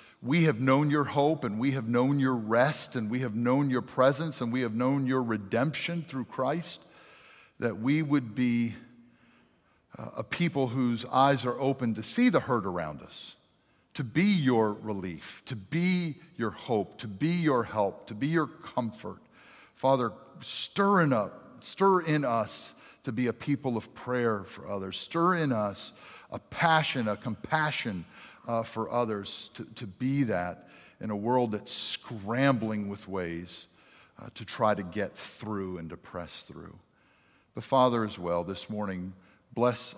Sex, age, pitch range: male, 50-69, 105-135 Hz